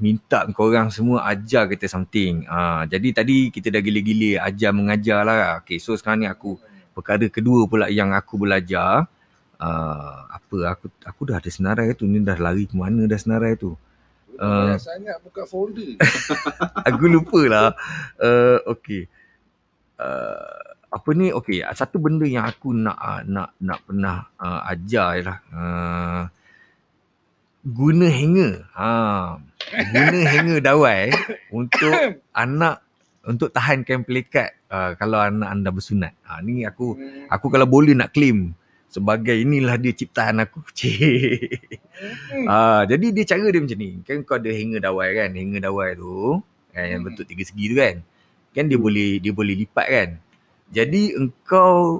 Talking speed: 150 wpm